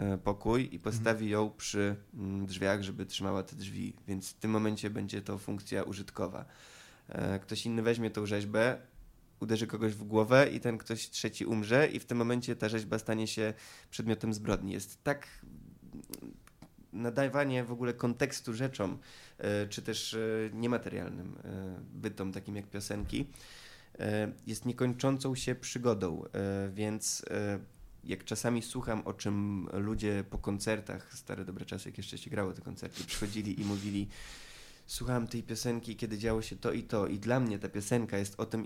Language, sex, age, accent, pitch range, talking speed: Polish, male, 20-39, native, 100-115 Hz, 150 wpm